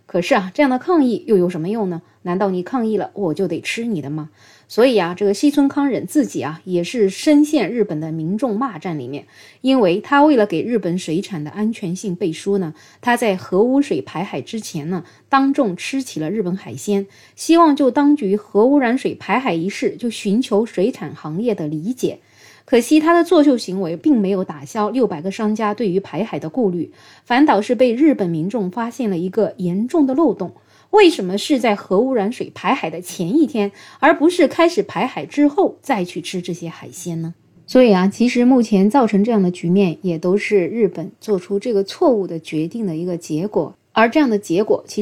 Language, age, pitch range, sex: Chinese, 20-39, 175-235 Hz, female